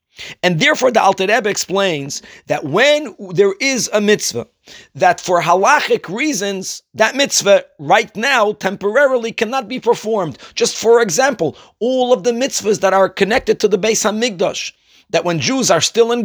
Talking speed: 160 wpm